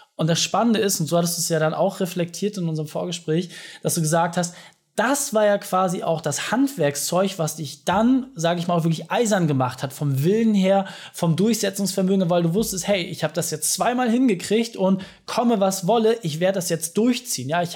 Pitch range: 165-200 Hz